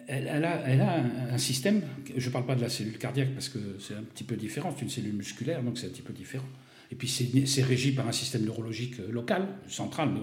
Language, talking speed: French, 265 wpm